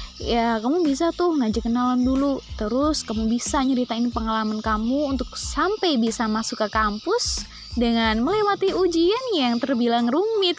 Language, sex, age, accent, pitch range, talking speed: Indonesian, female, 20-39, native, 235-350 Hz, 140 wpm